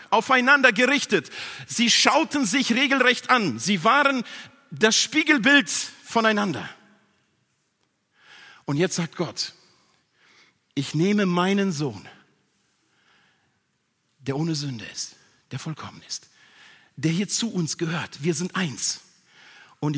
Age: 50-69